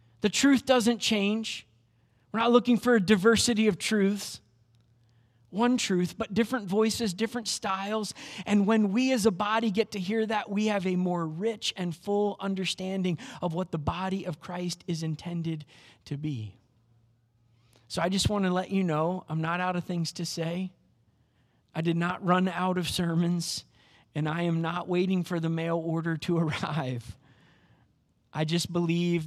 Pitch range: 140-205 Hz